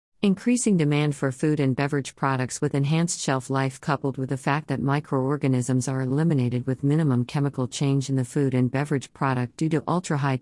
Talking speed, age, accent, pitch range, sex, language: 185 wpm, 50-69, American, 130-155 Hz, female, English